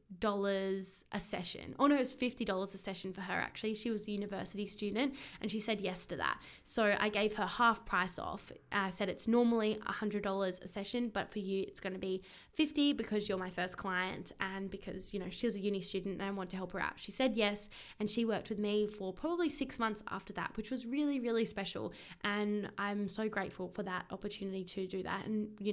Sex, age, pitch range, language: female, 10-29, 195-220 Hz, English